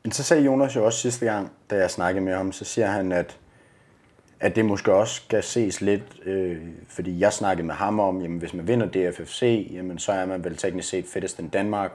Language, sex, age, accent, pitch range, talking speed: Danish, male, 30-49, native, 90-105 Hz, 230 wpm